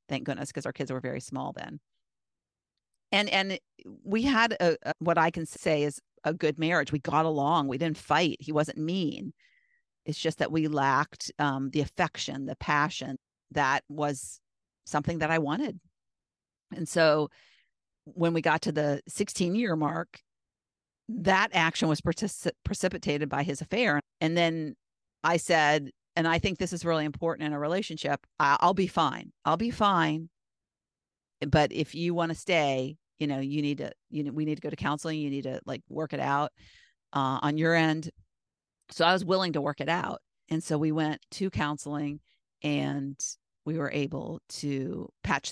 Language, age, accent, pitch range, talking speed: English, 50-69, American, 145-170 Hz, 180 wpm